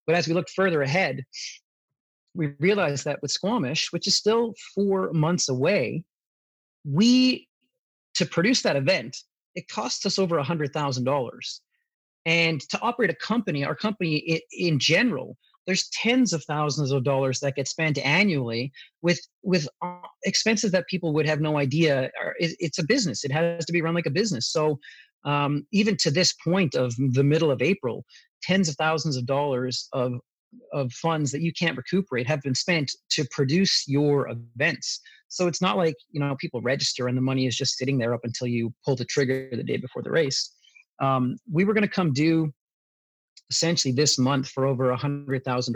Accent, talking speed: American, 175 wpm